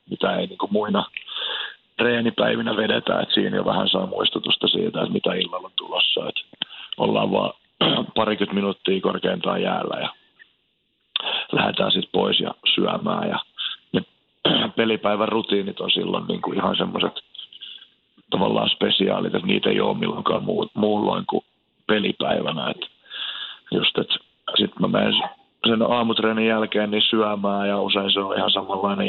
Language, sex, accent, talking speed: Finnish, male, native, 130 wpm